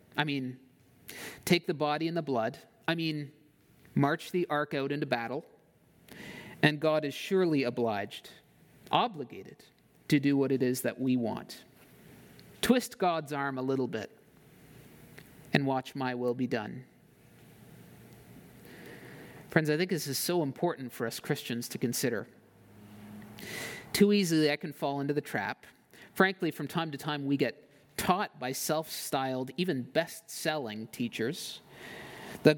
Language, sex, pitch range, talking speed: English, male, 130-175 Hz, 140 wpm